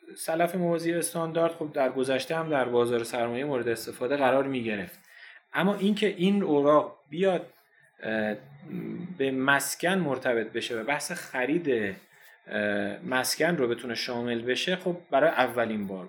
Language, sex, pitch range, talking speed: Persian, male, 125-165 Hz, 140 wpm